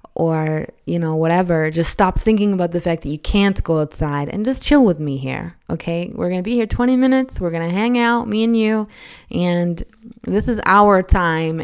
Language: English